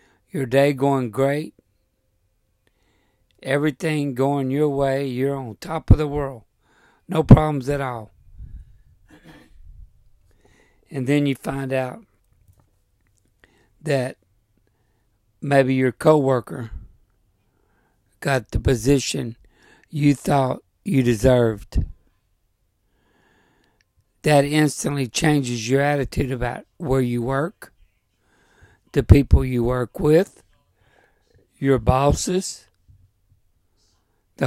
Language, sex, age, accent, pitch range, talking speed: English, male, 60-79, American, 100-140 Hz, 90 wpm